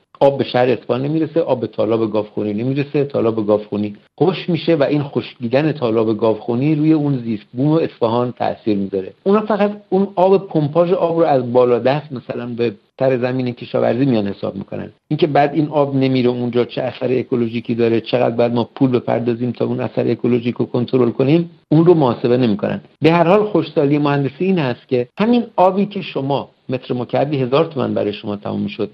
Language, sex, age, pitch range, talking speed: Persian, male, 50-69, 120-155 Hz, 185 wpm